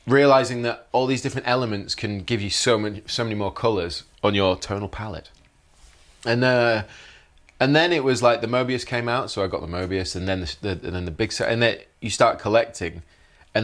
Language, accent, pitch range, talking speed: English, British, 90-120 Hz, 220 wpm